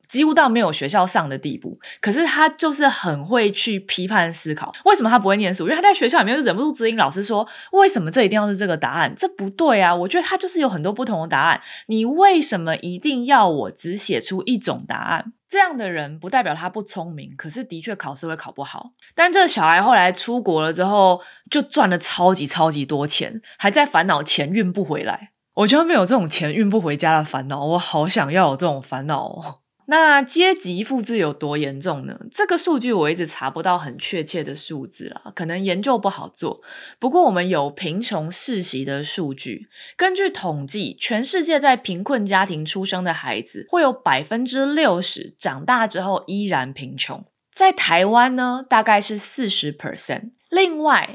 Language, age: Chinese, 20-39